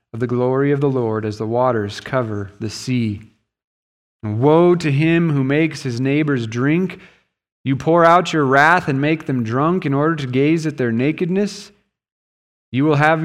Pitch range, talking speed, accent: 115-160 Hz, 170 wpm, American